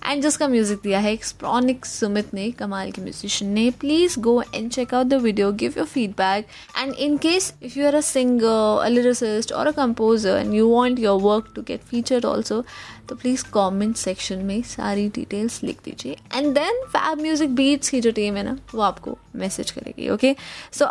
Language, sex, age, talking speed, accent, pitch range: Hindi, female, 20-39, 165 wpm, native, 205-275 Hz